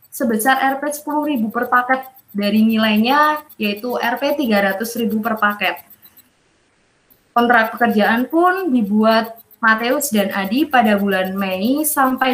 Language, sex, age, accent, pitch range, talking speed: Indonesian, female, 20-39, native, 210-265 Hz, 110 wpm